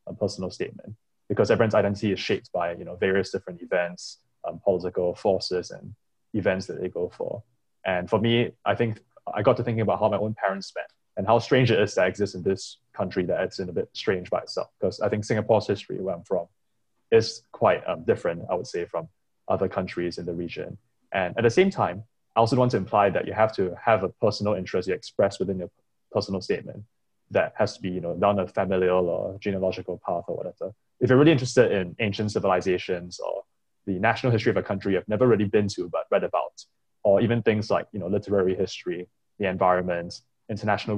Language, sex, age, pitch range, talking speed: English, male, 20-39, 95-115 Hz, 215 wpm